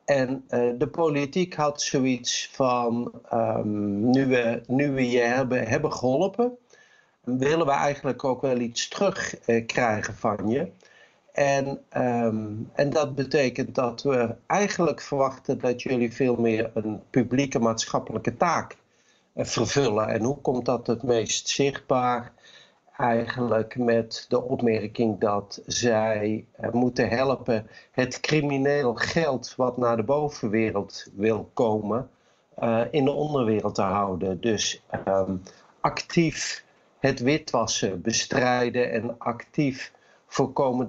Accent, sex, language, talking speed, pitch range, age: Dutch, male, Dutch, 115 wpm, 110-140 Hz, 50-69